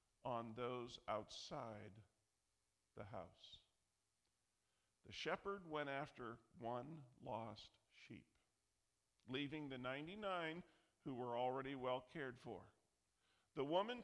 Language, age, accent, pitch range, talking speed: English, 50-69, American, 110-155 Hz, 100 wpm